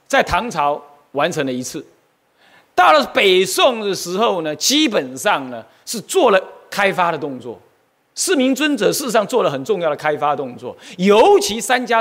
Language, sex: Chinese, male